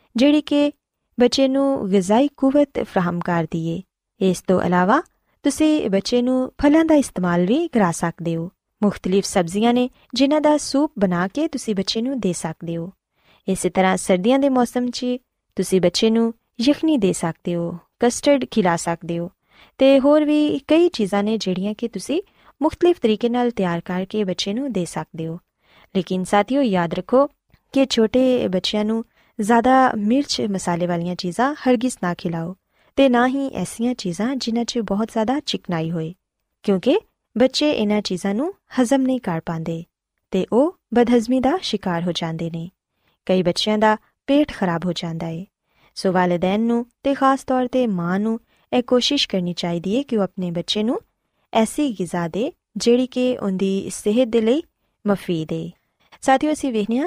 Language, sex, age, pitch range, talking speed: Urdu, female, 20-39, 185-260 Hz, 140 wpm